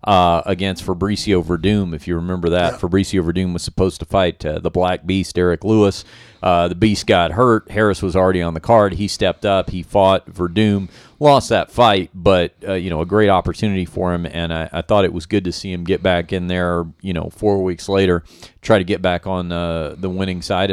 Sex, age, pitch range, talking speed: male, 40-59, 90-110 Hz, 225 wpm